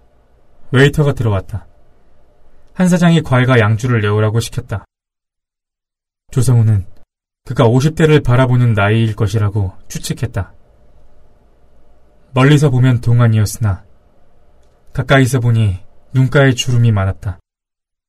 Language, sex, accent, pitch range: Korean, male, native, 95-135 Hz